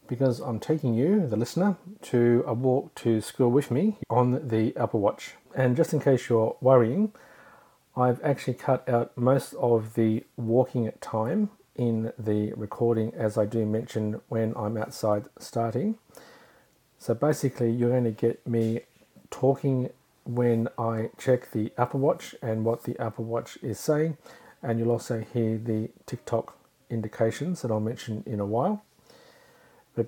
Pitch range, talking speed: 115-130 Hz, 155 wpm